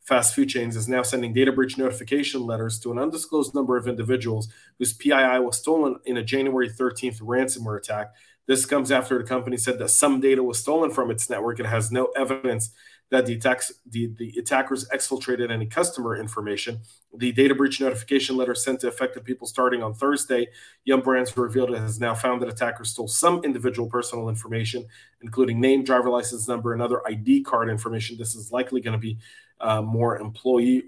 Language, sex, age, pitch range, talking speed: English, male, 30-49, 115-130 Hz, 190 wpm